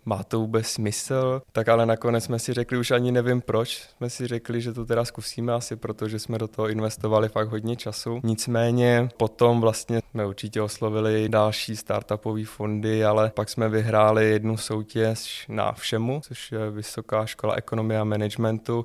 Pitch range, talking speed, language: 110-120 Hz, 170 wpm, Czech